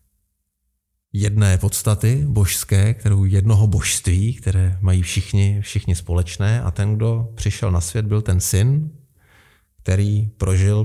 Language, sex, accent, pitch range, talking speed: Czech, male, native, 100-130 Hz, 120 wpm